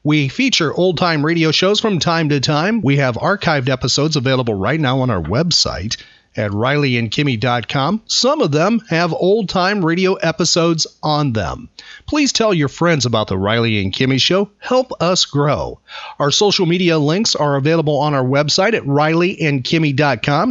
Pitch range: 140-185 Hz